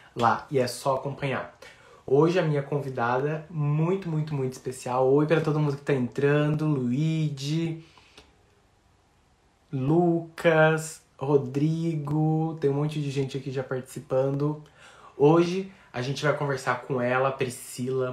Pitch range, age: 125-150 Hz, 20-39